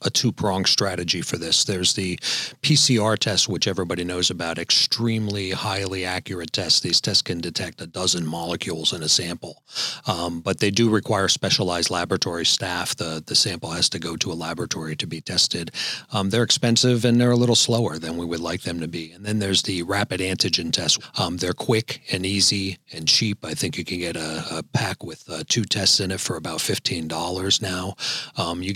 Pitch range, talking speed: 85-105 Hz, 200 wpm